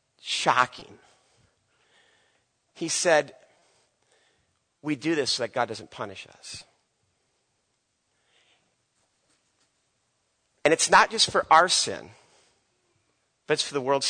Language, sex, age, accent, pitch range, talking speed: English, male, 40-59, American, 115-185 Hz, 100 wpm